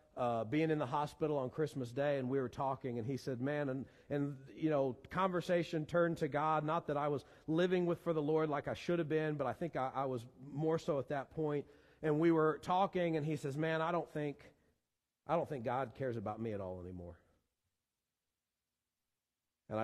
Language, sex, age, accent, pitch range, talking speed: English, male, 40-59, American, 95-140 Hz, 215 wpm